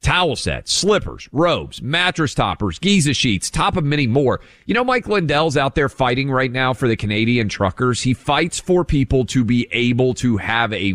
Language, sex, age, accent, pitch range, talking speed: English, male, 40-59, American, 110-145 Hz, 190 wpm